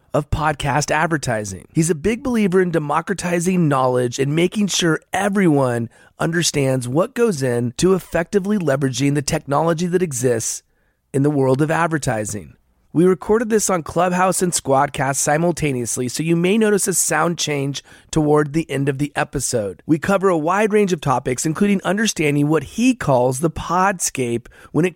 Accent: American